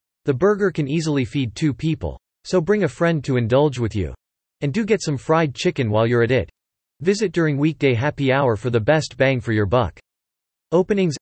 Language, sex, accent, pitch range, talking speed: English, male, American, 115-155 Hz, 205 wpm